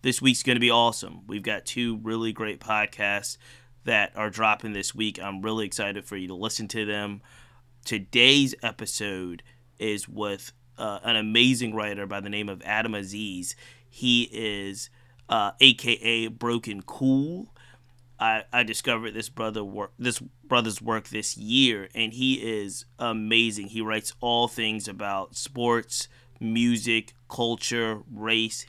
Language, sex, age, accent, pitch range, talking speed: English, male, 20-39, American, 105-125 Hz, 145 wpm